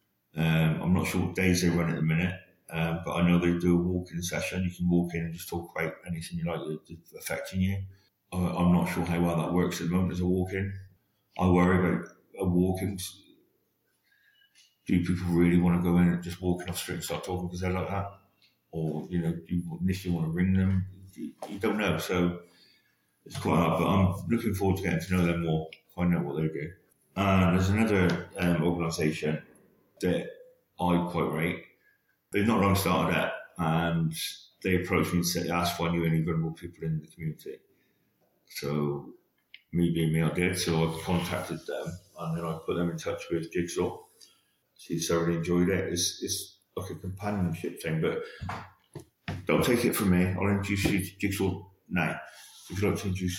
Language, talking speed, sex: English, 205 wpm, male